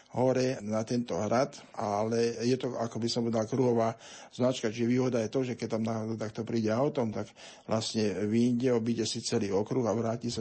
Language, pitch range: Slovak, 110-120 Hz